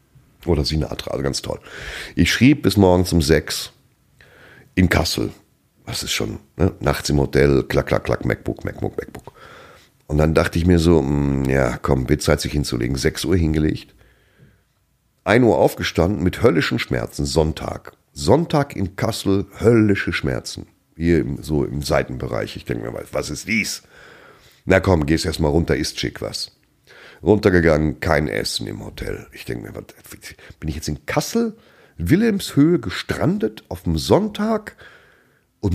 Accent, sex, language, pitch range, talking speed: German, male, German, 70-105 Hz, 160 wpm